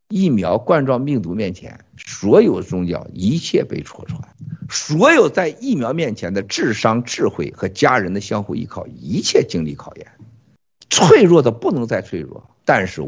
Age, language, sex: 50-69, Chinese, male